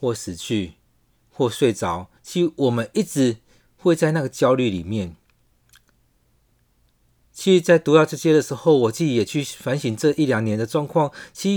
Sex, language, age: male, Chinese, 40-59